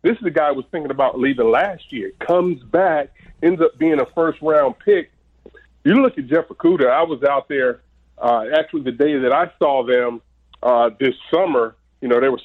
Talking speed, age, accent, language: 205 wpm, 30-49, American, English